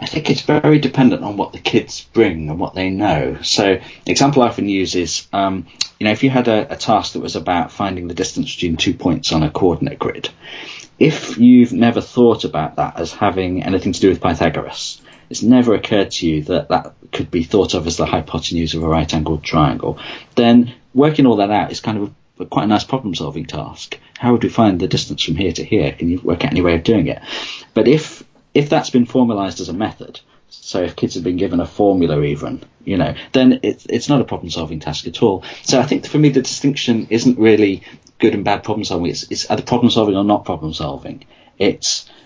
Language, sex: English, male